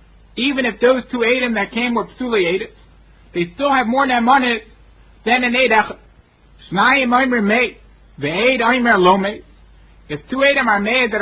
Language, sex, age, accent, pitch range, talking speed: English, male, 50-69, American, 175-235 Hz, 160 wpm